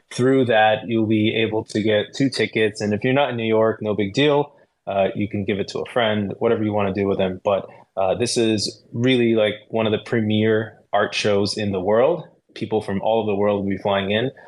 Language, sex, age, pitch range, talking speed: English, male, 20-39, 100-120 Hz, 240 wpm